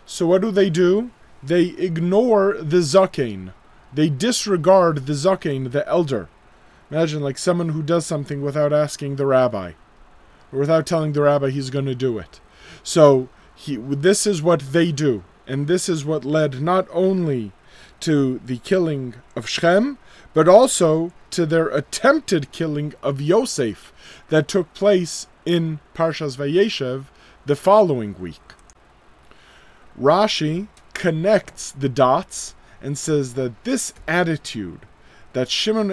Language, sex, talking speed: English, male, 135 wpm